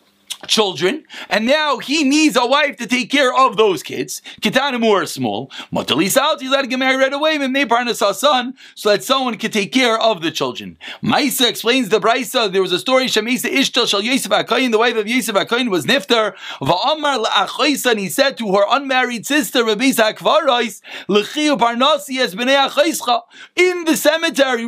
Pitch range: 220-285 Hz